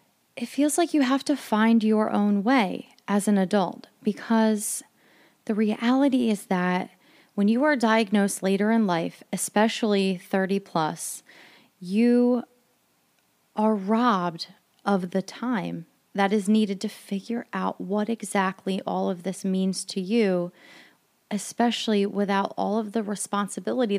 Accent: American